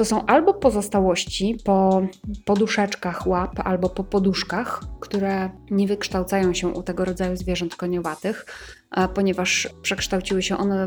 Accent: native